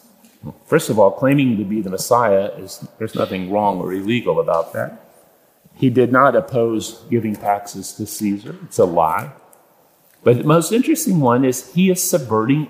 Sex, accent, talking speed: male, American, 170 wpm